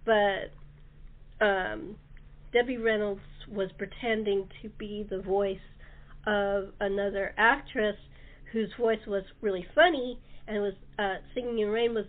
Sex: female